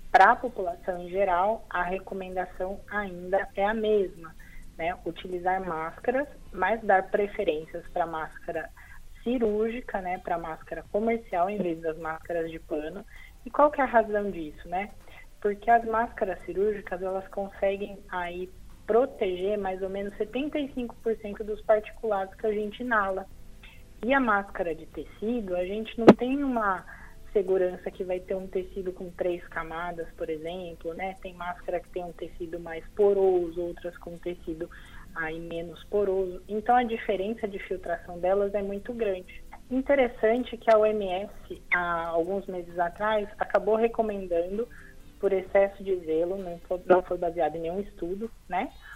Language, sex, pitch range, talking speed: Portuguese, female, 180-220 Hz, 150 wpm